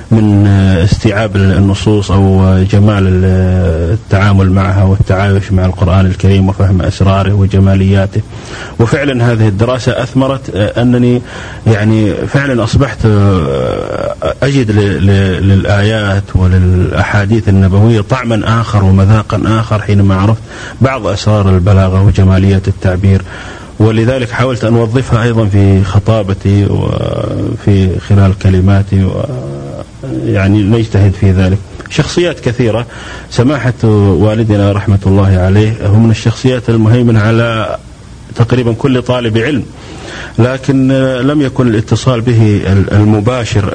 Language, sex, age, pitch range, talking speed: Arabic, male, 30-49, 95-115 Hz, 100 wpm